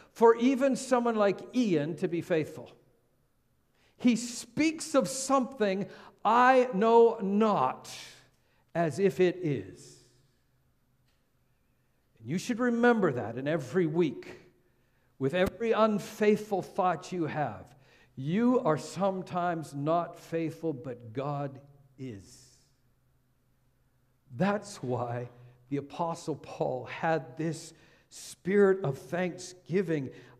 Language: English